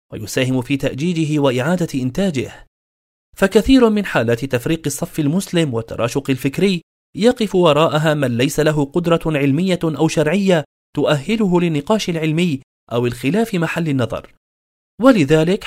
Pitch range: 135-165 Hz